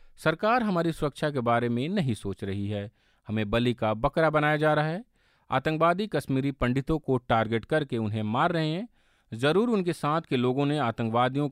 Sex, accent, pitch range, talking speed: male, native, 110-150 Hz, 180 wpm